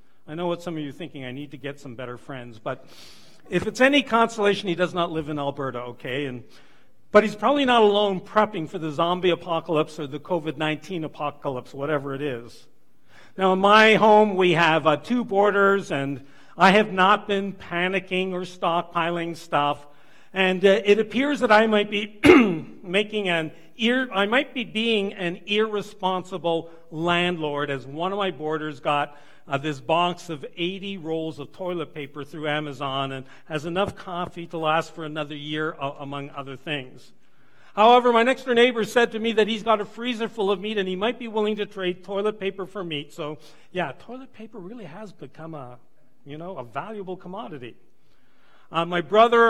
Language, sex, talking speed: English, male, 185 wpm